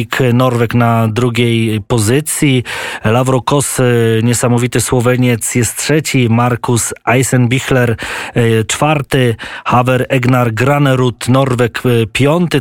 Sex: male